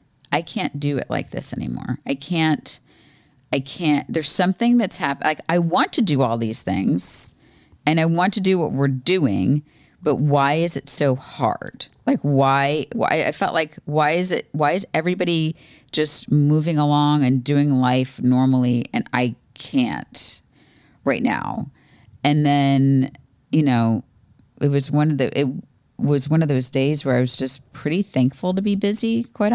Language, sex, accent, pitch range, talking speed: English, female, American, 130-165 Hz, 175 wpm